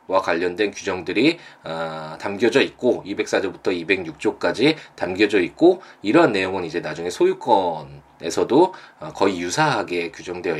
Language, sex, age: Korean, male, 20-39